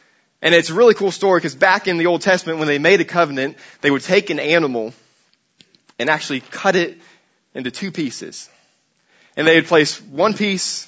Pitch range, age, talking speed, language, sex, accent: 135-175 Hz, 20-39, 195 wpm, English, male, American